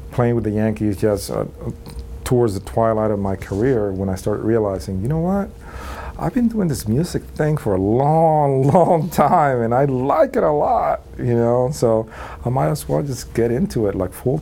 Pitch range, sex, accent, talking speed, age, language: 95-115 Hz, male, American, 205 wpm, 40-59, English